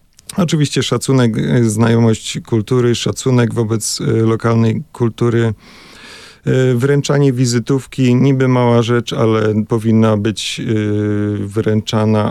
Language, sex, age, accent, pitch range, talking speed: Polish, male, 40-59, native, 110-125 Hz, 85 wpm